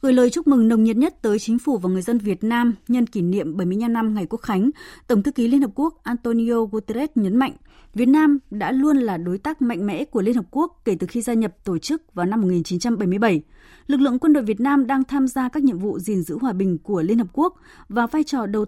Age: 20-39